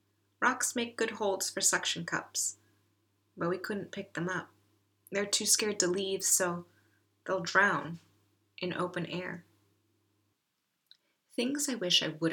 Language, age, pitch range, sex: English, 30-49, 150-205 Hz, female